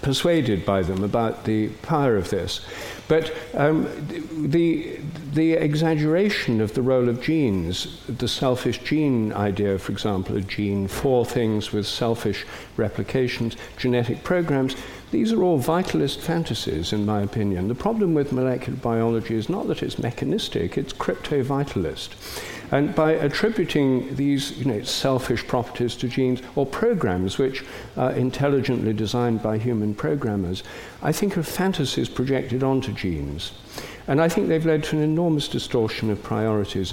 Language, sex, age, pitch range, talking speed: English, male, 50-69, 110-145 Hz, 145 wpm